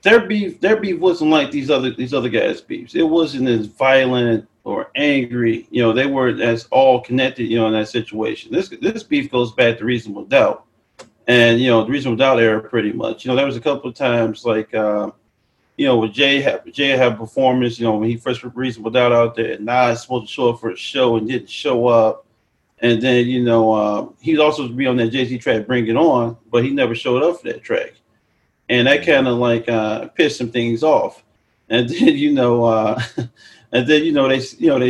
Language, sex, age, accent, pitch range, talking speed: English, male, 40-59, American, 115-150 Hz, 225 wpm